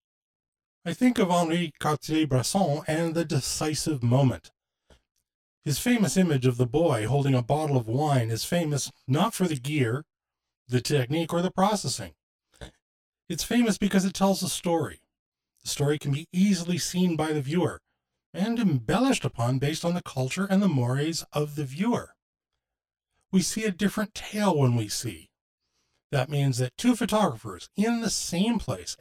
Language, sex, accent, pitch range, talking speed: English, male, American, 120-175 Hz, 160 wpm